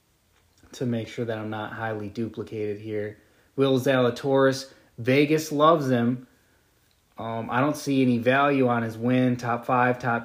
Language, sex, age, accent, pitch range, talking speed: English, male, 20-39, American, 115-130 Hz, 150 wpm